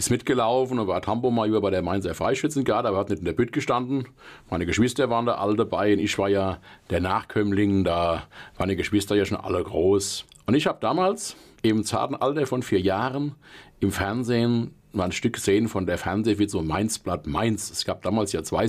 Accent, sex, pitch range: German, male, 100-130 Hz